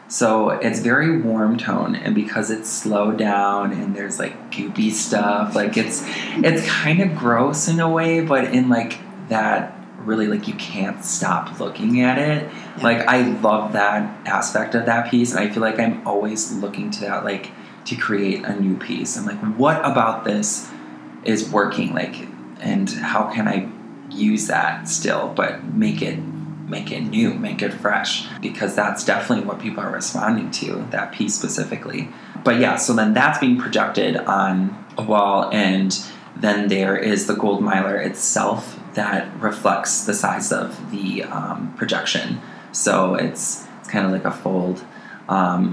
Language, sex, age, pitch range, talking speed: English, male, 20-39, 100-140 Hz, 170 wpm